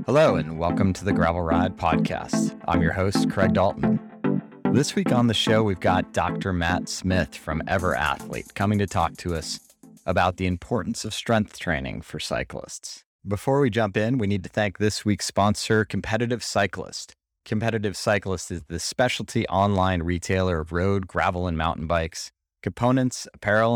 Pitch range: 85-105 Hz